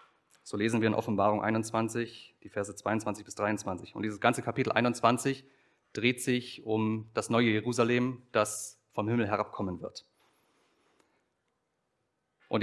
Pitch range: 110-135 Hz